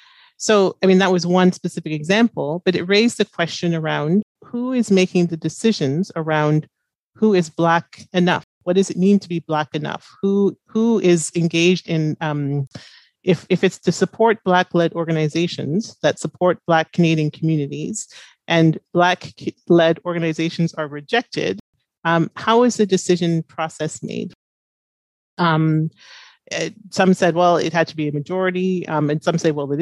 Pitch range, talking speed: 155-185 Hz, 155 wpm